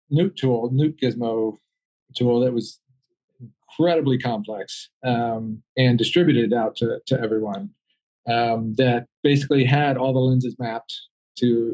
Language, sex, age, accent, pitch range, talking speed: English, male, 40-59, American, 120-140 Hz, 130 wpm